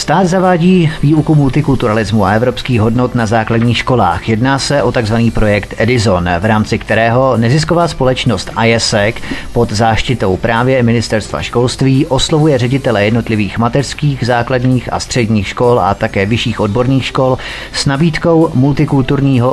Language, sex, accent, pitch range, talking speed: Czech, male, native, 110-140 Hz, 130 wpm